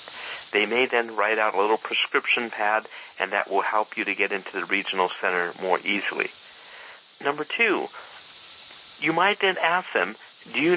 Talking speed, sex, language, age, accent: 175 wpm, male, English, 50-69, American